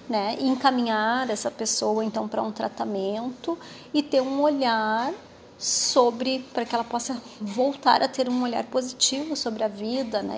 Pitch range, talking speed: 220-270 Hz, 160 wpm